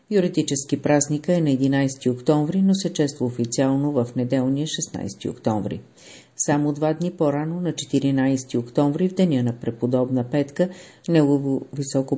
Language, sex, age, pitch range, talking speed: Bulgarian, female, 50-69, 125-160 Hz, 140 wpm